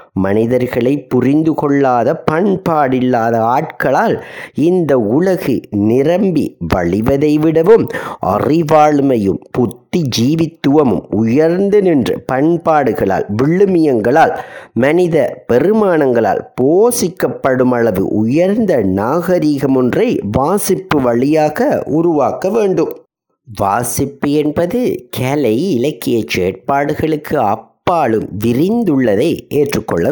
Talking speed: 70 wpm